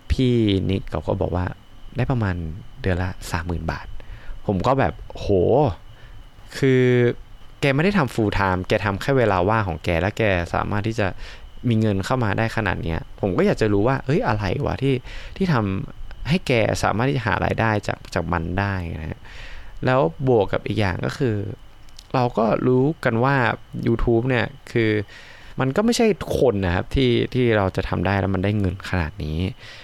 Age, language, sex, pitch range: 20-39, Thai, male, 95-120 Hz